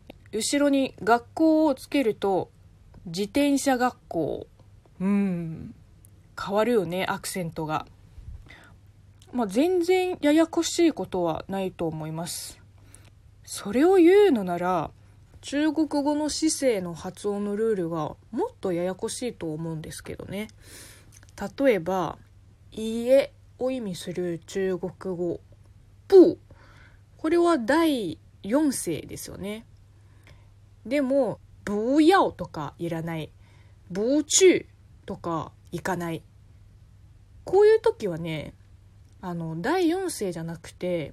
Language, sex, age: Japanese, female, 20-39